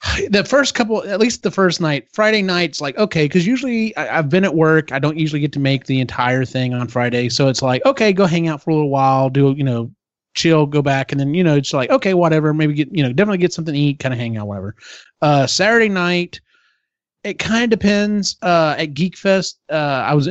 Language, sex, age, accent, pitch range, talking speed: English, male, 30-49, American, 130-170 Hz, 245 wpm